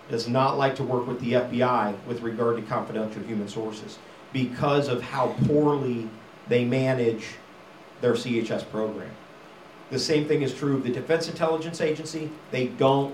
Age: 40-59